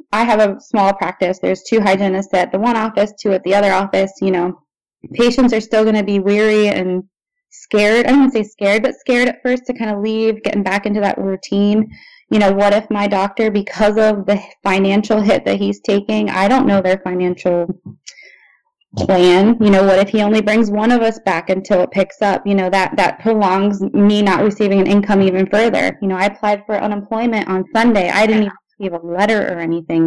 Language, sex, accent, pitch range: English, female, American, 190-215 Hz